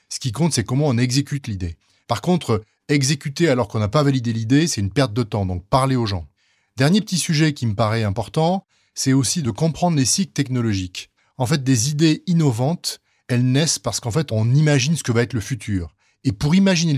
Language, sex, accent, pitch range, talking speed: French, male, French, 110-145 Hz, 215 wpm